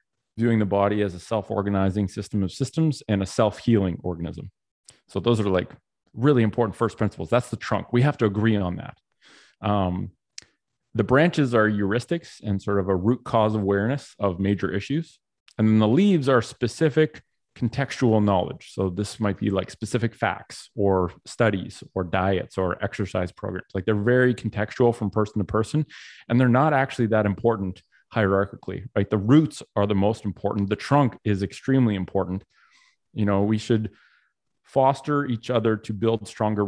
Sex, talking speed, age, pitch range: male, 170 wpm, 30-49, 100-120 Hz